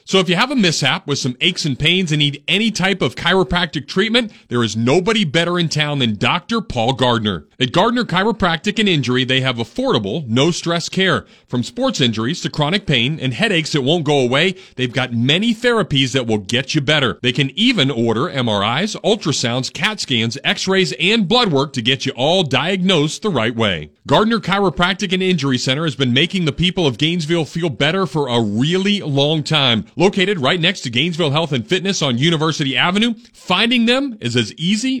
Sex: male